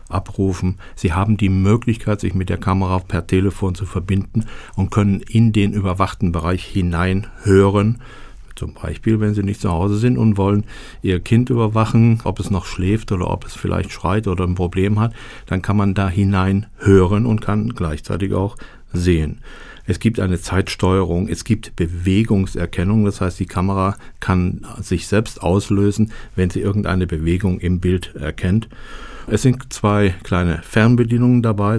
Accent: German